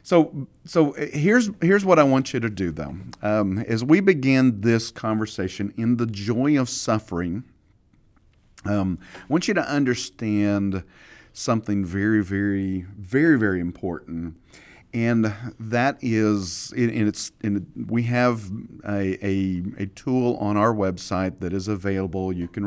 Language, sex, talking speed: English, male, 145 wpm